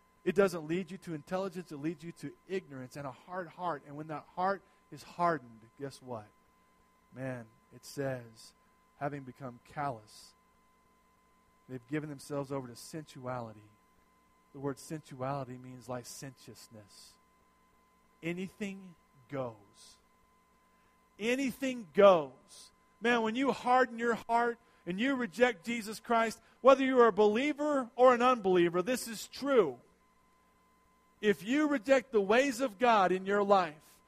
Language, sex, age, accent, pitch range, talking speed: English, male, 40-59, American, 140-225 Hz, 135 wpm